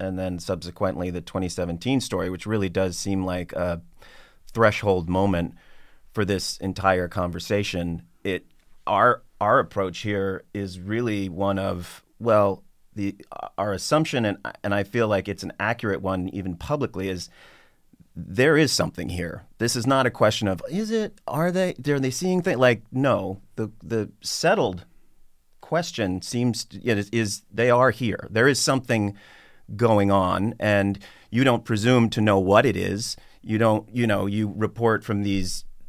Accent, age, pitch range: American, 30-49, 95-115 Hz